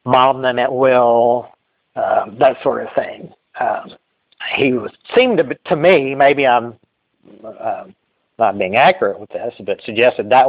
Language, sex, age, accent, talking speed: English, male, 50-69, American, 145 wpm